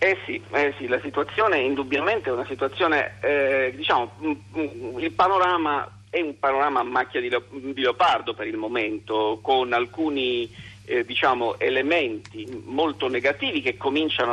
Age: 50-69